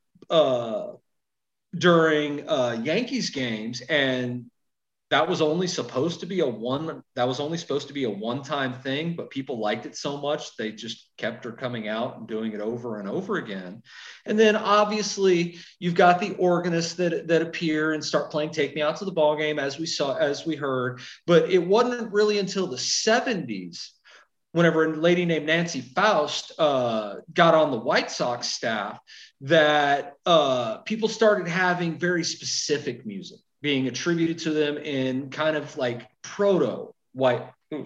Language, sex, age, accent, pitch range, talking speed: English, male, 40-59, American, 145-190 Hz, 170 wpm